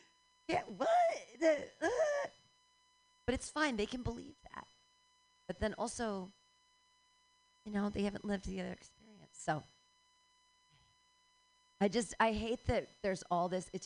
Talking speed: 130 wpm